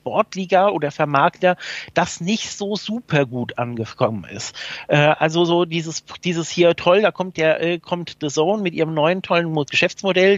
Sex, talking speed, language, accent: male, 155 wpm, German, German